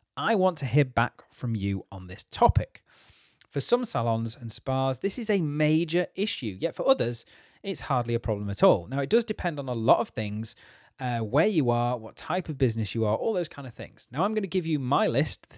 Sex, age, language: male, 30-49, English